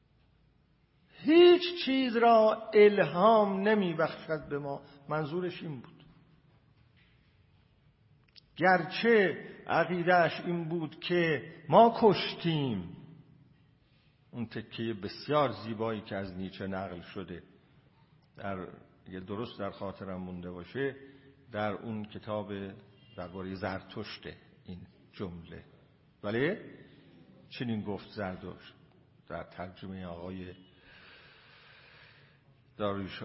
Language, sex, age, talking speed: Persian, male, 50-69, 85 wpm